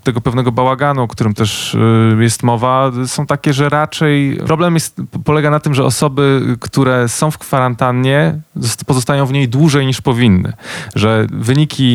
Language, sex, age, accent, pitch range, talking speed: Polish, male, 20-39, native, 110-135 Hz, 150 wpm